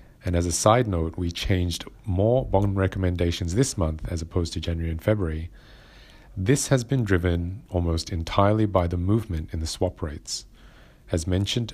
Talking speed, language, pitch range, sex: 170 wpm, English, 85-105 Hz, male